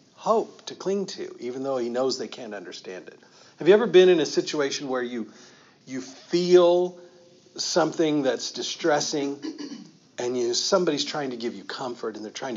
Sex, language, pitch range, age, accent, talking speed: male, English, 130-210 Hz, 50-69, American, 175 wpm